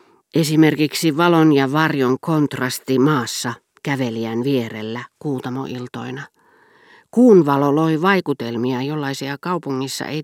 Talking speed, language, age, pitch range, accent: 90 wpm, Finnish, 40-59, 125-165 Hz, native